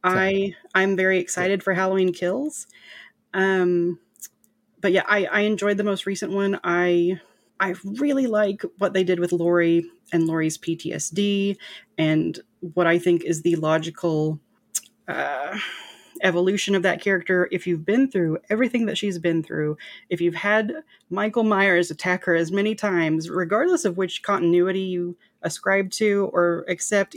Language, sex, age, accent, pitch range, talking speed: English, female, 30-49, American, 160-195 Hz, 155 wpm